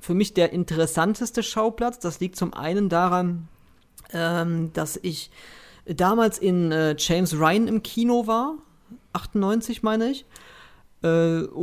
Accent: German